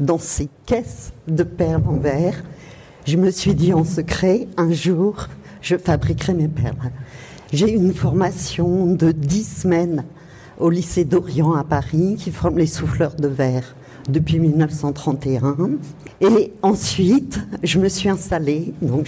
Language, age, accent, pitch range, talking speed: French, 50-69, French, 145-180 Hz, 145 wpm